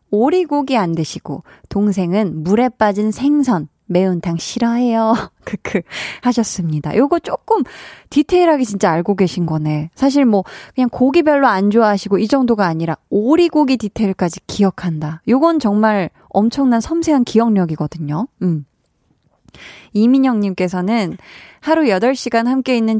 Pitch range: 185-260 Hz